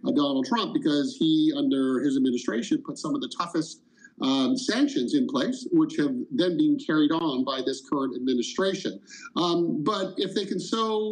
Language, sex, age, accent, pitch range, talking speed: English, male, 50-69, American, 185-305 Hz, 175 wpm